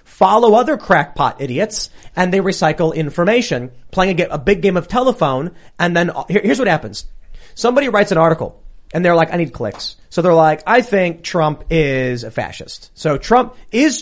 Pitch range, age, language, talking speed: 145-200 Hz, 30-49, English, 180 wpm